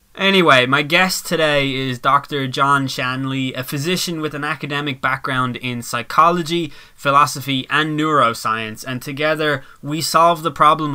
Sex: male